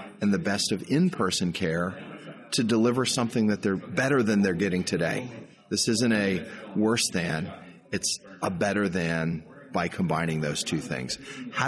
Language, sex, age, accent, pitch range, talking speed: English, male, 40-59, American, 95-120 Hz, 160 wpm